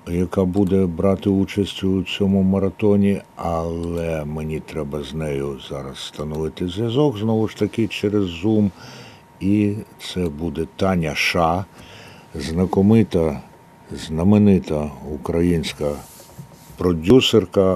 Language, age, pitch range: Ukrainian, 60-79, 80-100 Hz